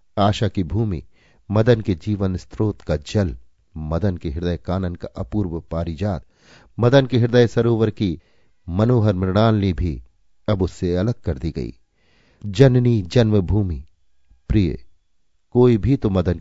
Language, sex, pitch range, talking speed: Hindi, male, 85-115 Hz, 135 wpm